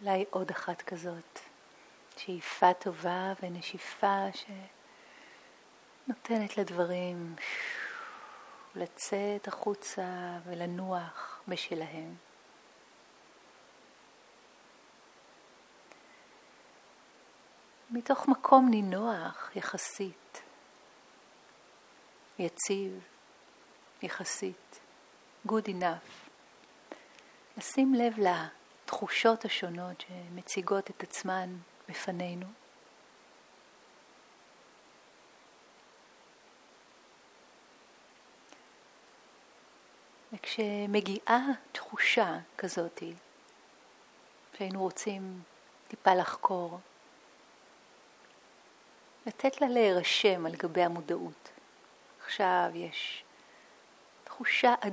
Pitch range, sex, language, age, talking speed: 180-215 Hz, female, Hebrew, 40-59, 50 wpm